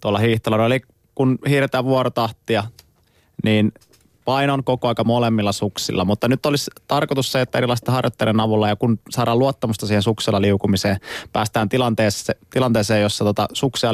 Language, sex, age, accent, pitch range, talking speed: Finnish, male, 20-39, native, 105-130 Hz, 140 wpm